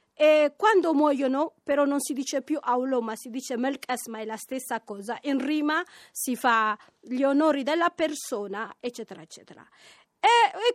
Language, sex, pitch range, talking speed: Italian, female, 255-365 Hz, 160 wpm